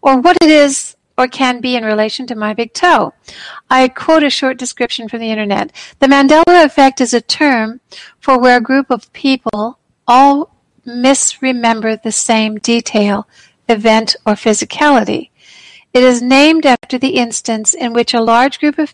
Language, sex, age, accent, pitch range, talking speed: English, female, 60-79, American, 225-270 Hz, 170 wpm